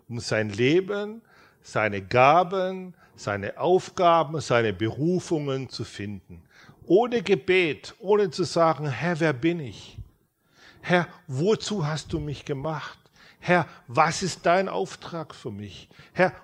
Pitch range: 115-165 Hz